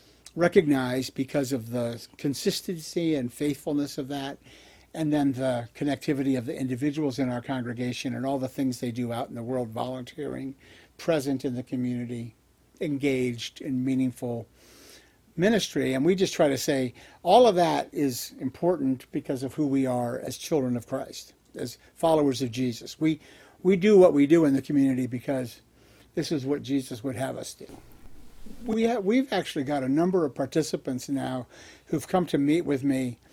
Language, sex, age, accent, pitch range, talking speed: English, male, 60-79, American, 130-155 Hz, 175 wpm